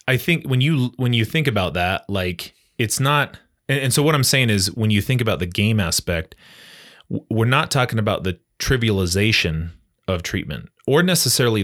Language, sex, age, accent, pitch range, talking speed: English, male, 30-49, American, 90-115 Hz, 180 wpm